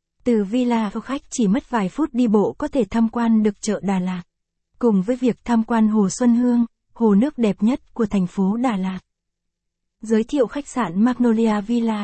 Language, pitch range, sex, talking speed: Vietnamese, 200-245 Hz, female, 200 wpm